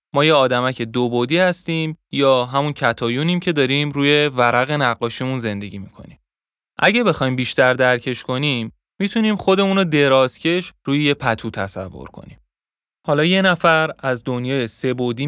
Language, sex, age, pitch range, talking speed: Persian, male, 20-39, 120-170 Hz, 150 wpm